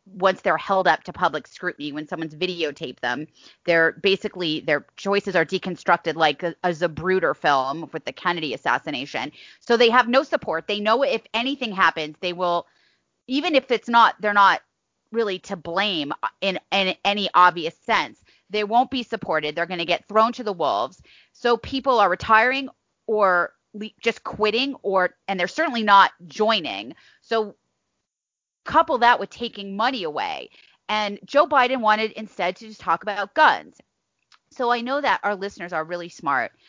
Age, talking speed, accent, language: 30-49, 170 wpm, American, English